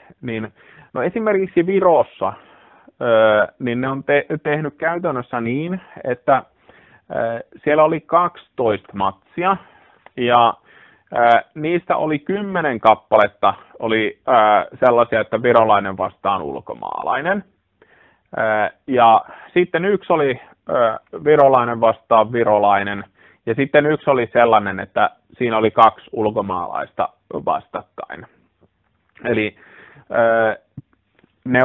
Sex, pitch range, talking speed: male, 110-150 Hz, 85 wpm